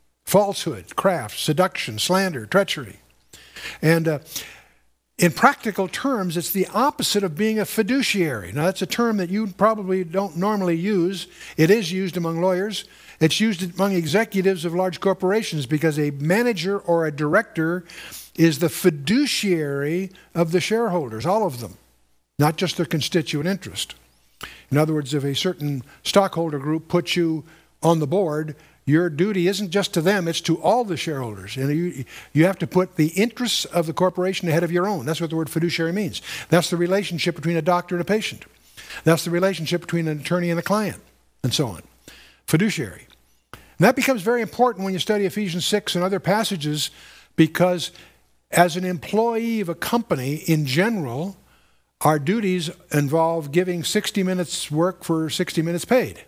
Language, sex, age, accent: English, male, 60-79, American